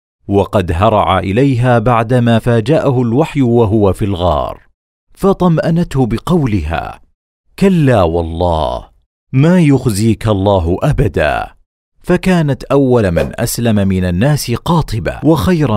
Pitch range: 95-135 Hz